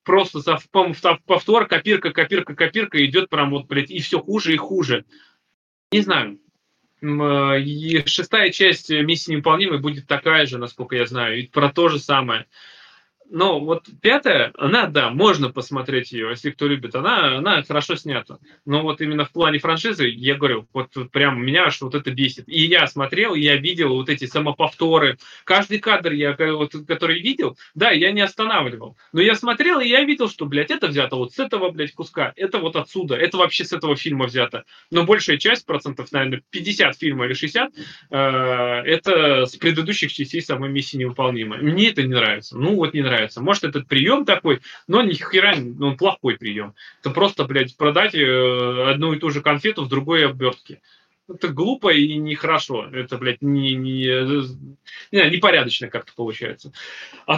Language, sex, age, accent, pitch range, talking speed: Russian, male, 20-39, native, 135-170 Hz, 165 wpm